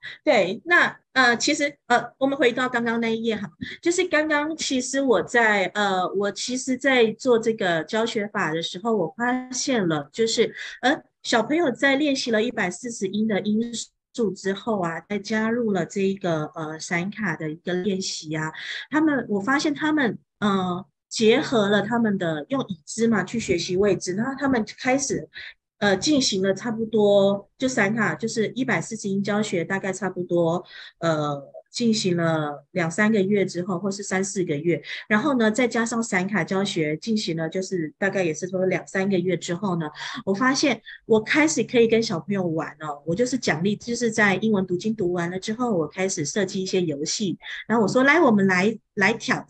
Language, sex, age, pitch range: Chinese, female, 30-49, 180-235 Hz